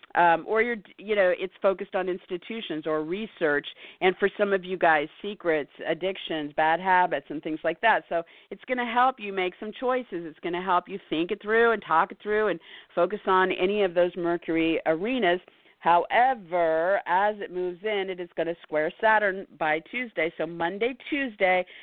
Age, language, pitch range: 50-69, English, 160-195 Hz